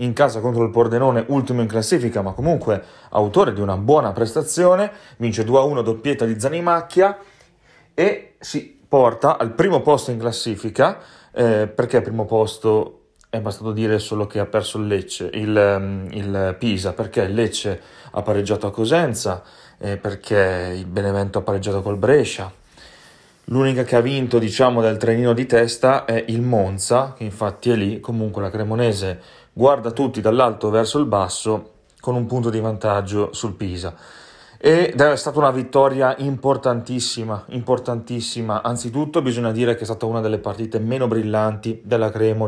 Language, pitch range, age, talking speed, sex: Italian, 105-125 Hz, 30-49, 155 wpm, male